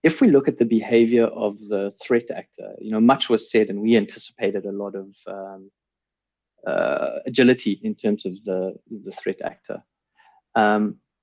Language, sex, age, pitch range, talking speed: Swedish, male, 30-49, 100-135 Hz, 170 wpm